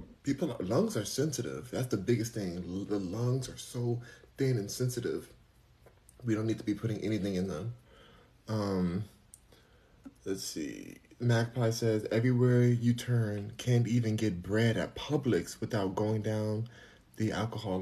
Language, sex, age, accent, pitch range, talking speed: English, male, 20-39, American, 95-115 Hz, 150 wpm